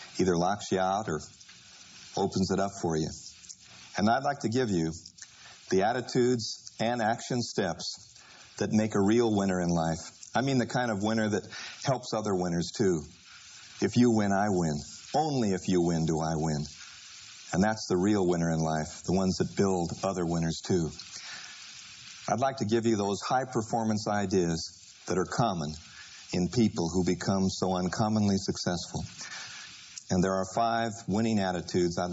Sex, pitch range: male, 85-110 Hz